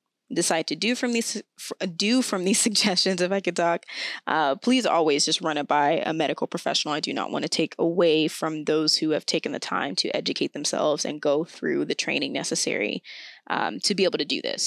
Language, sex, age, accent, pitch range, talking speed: English, female, 20-39, American, 175-230 Hz, 215 wpm